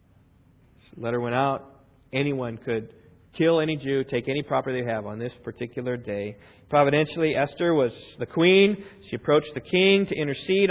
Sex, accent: male, American